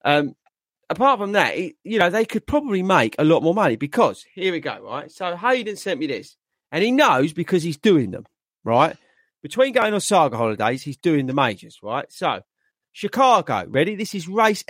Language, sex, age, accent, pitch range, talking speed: English, male, 40-59, British, 135-225 Hz, 195 wpm